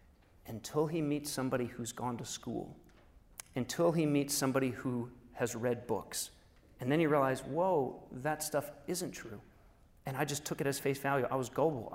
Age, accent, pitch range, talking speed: 40-59, American, 125-160 Hz, 180 wpm